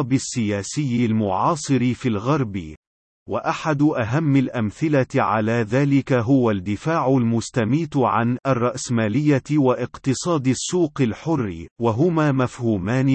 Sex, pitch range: male, 115-145 Hz